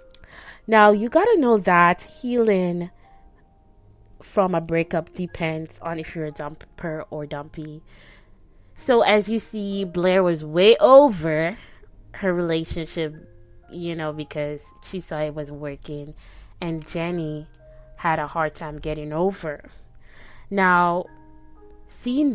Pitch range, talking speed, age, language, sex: 155-200 Hz, 125 wpm, 20-39, English, female